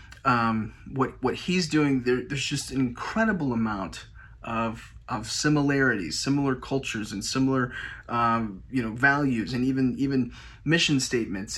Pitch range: 115-140 Hz